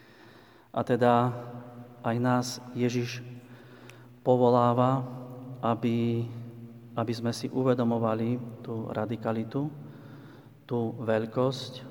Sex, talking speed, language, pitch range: male, 75 wpm, Slovak, 115-125 Hz